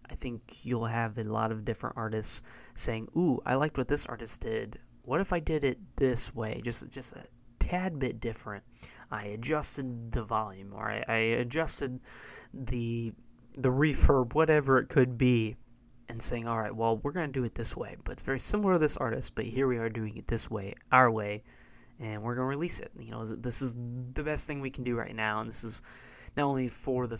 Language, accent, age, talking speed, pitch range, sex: English, American, 20-39, 215 wpm, 115-135 Hz, male